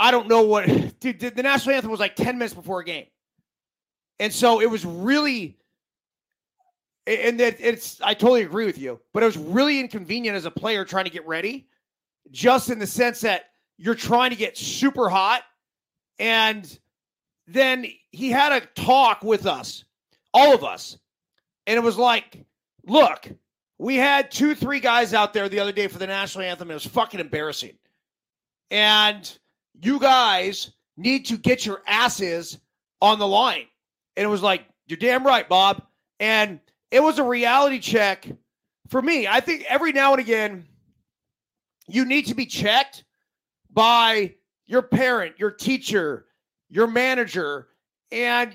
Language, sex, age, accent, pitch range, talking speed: English, male, 30-49, American, 200-255 Hz, 160 wpm